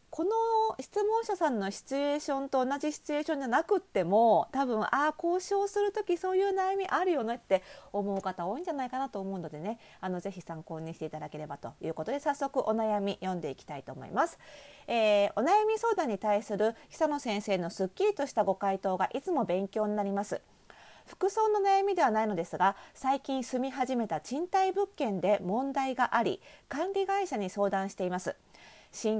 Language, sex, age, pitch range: Japanese, female, 40-59, 195-295 Hz